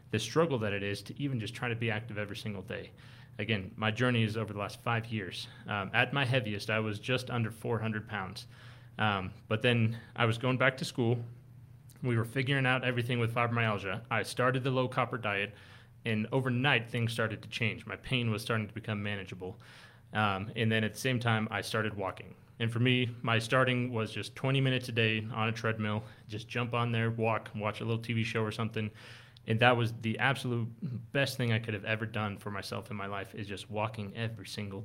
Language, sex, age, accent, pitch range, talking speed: English, male, 30-49, American, 105-125 Hz, 220 wpm